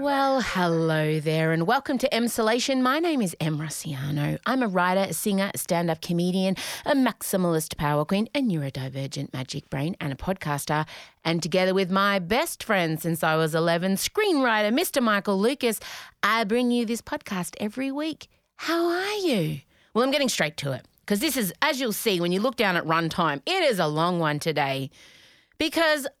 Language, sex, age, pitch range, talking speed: English, female, 30-49, 165-245 Hz, 185 wpm